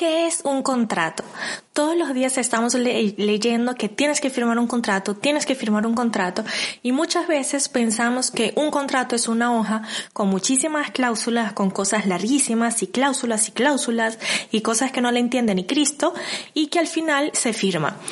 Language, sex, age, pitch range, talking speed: Spanish, female, 20-39, 220-290 Hz, 180 wpm